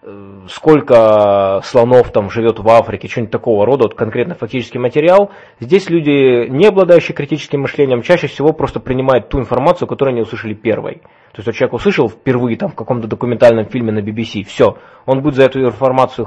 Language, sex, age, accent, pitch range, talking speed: Russian, male, 20-39, native, 115-140 Hz, 175 wpm